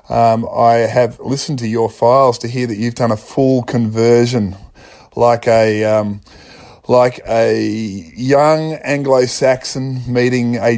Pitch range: 110-125 Hz